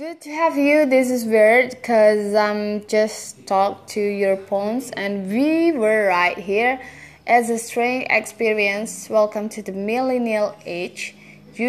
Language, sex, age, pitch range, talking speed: English, female, 20-39, 190-245 Hz, 160 wpm